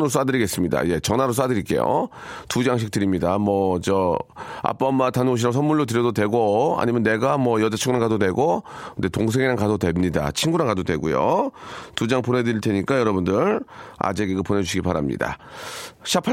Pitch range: 100-145 Hz